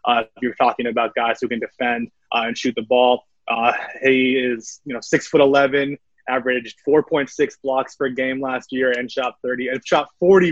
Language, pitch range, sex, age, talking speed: English, 120-130 Hz, male, 20-39, 205 wpm